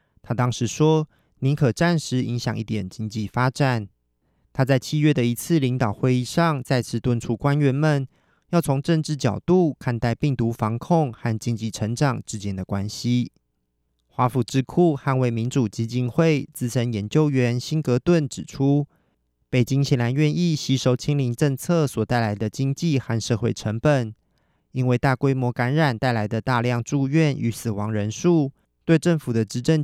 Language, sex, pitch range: Chinese, male, 115-145 Hz